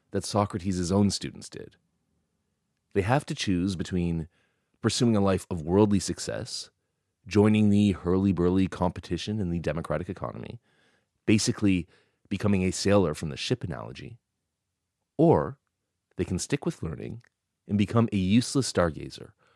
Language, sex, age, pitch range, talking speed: English, male, 30-49, 90-115 Hz, 130 wpm